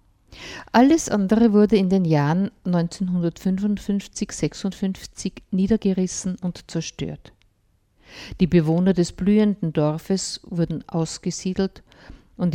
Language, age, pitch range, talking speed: German, 50-69, 155-195 Hz, 85 wpm